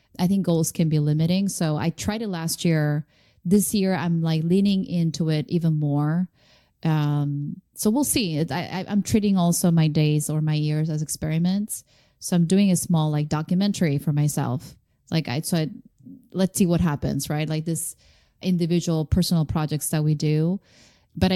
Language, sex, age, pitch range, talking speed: English, female, 20-39, 155-190 Hz, 170 wpm